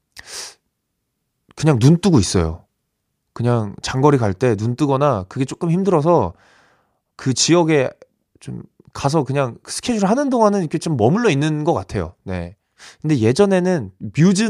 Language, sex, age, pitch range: Korean, male, 20-39, 105-165 Hz